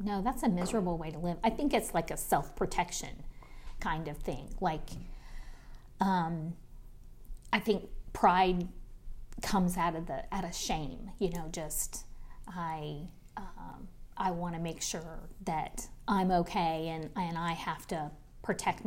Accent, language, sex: American, English, female